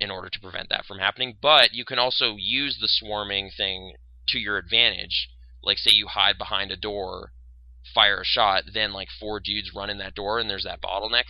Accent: American